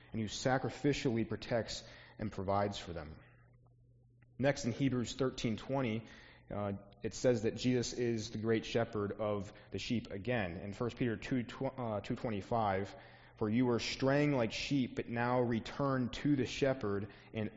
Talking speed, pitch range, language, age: 160 wpm, 110-135 Hz, English, 30-49